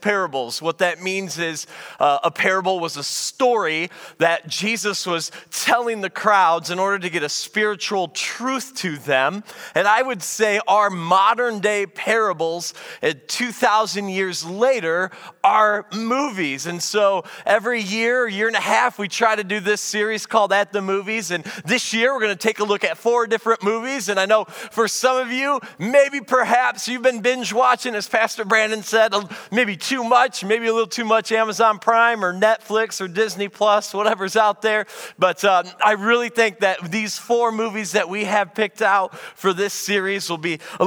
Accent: American